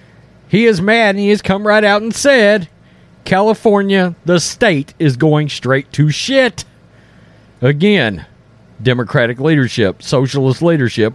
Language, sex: English, male